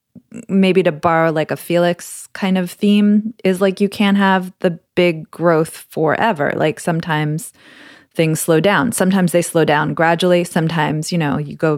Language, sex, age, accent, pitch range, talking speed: English, female, 20-39, American, 160-200 Hz, 170 wpm